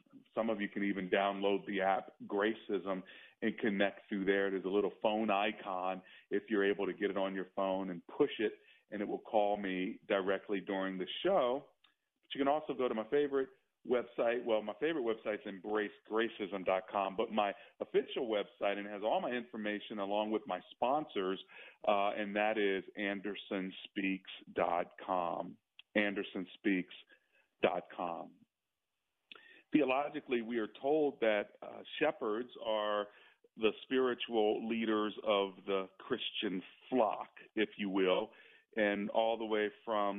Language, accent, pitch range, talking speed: English, American, 100-110 Hz, 145 wpm